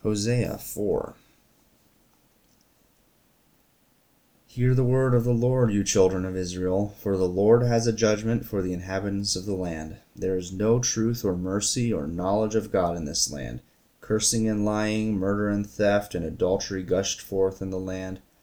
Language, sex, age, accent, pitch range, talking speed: English, male, 30-49, American, 90-110 Hz, 165 wpm